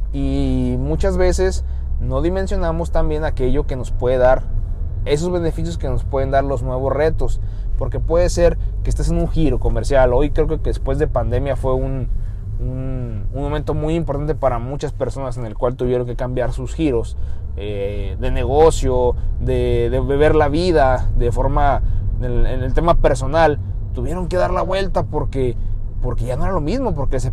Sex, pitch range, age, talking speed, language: male, 100-145 Hz, 20-39, 180 wpm, Spanish